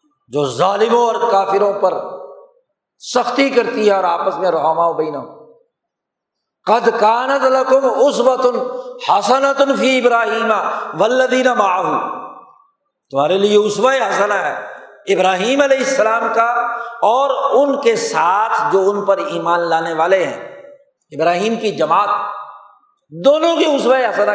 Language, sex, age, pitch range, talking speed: Urdu, male, 60-79, 205-280 Hz, 90 wpm